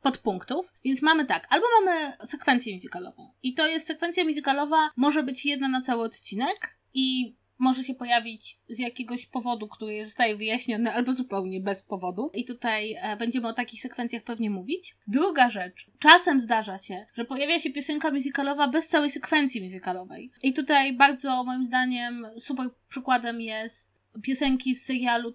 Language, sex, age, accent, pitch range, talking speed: Polish, female, 20-39, native, 230-285 Hz, 155 wpm